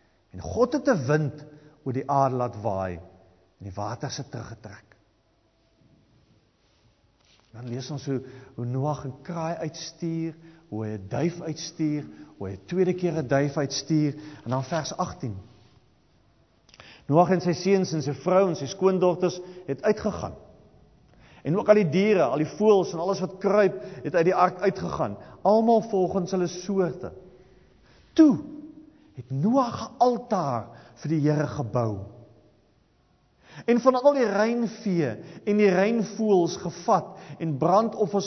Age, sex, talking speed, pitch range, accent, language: 50-69, male, 145 wpm, 120-190 Hz, Dutch, English